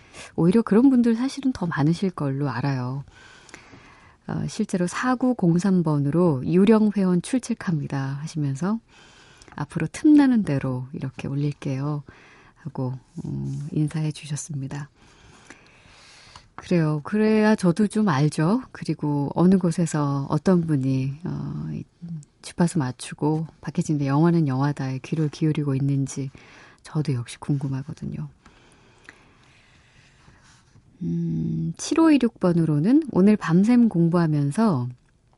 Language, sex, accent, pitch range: Korean, female, native, 135-175 Hz